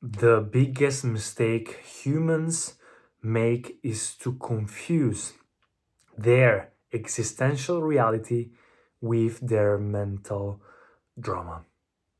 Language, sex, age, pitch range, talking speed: Italian, male, 20-39, 105-125 Hz, 75 wpm